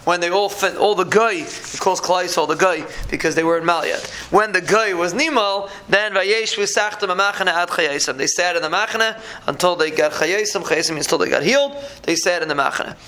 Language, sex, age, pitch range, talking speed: English, male, 20-39, 175-210 Hz, 235 wpm